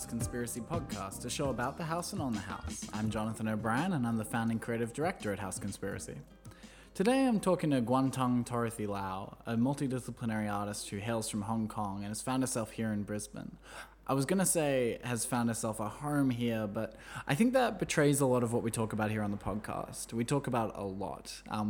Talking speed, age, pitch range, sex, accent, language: 215 wpm, 20-39, 110-135 Hz, male, Australian, English